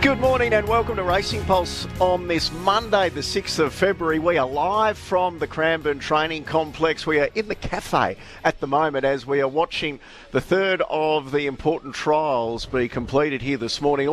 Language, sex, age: English, male, 50-69